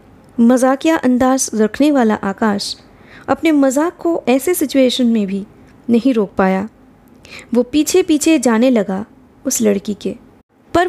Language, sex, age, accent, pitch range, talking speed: Hindi, female, 20-39, native, 225-295 Hz, 130 wpm